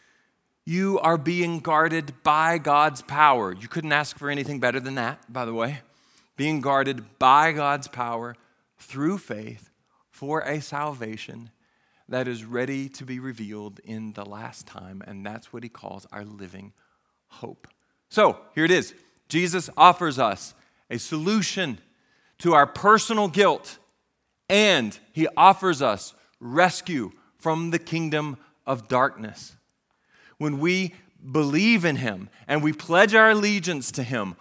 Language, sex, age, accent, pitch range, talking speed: English, male, 40-59, American, 115-170 Hz, 140 wpm